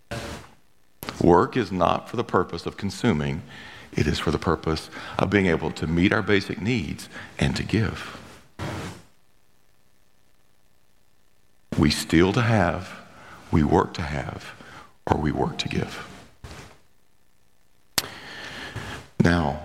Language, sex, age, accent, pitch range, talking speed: English, male, 50-69, American, 80-105 Hz, 115 wpm